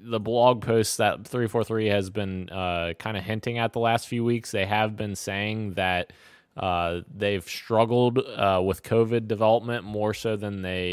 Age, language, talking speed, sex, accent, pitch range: 20-39, English, 185 wpm, male, American, 100-120 Hz